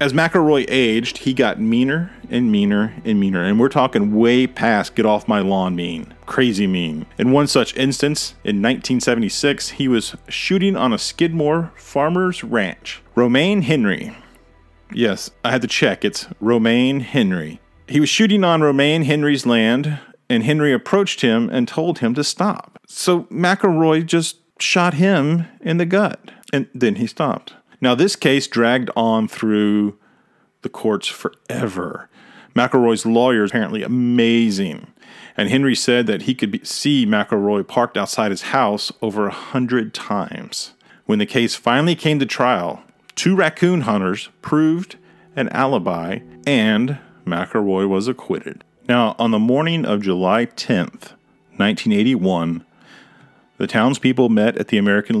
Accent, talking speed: American, 145 wpm